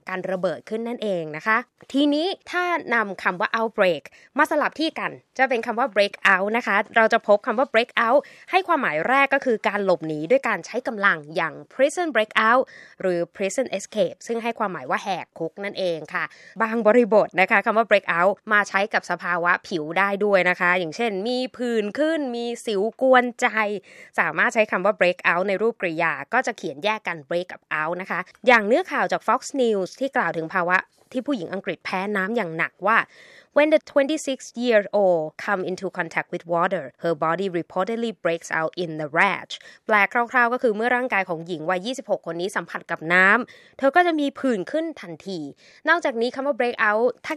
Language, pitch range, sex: Thai, 180-250 Hz, female